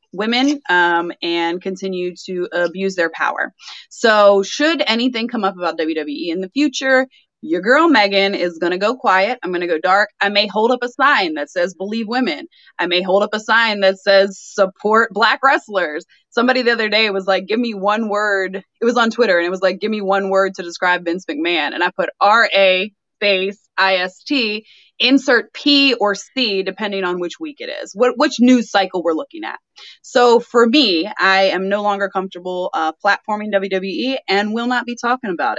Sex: female